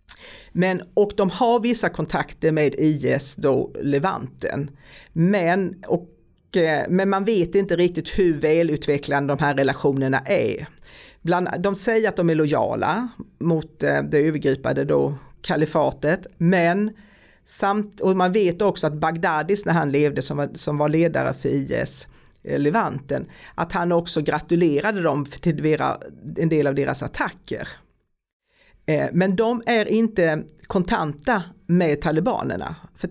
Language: Swedish